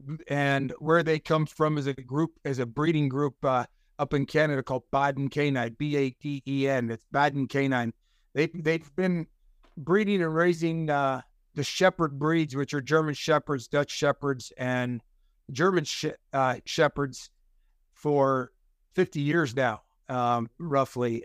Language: English